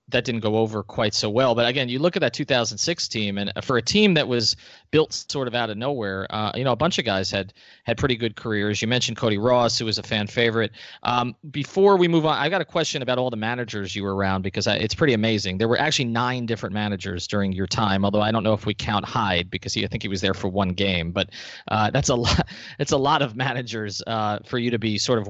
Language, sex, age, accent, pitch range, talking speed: English, male, 30-49, American, 105-130 Hz, 270 wpm